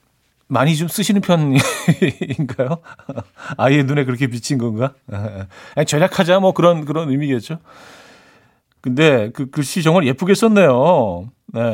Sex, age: male, 40-59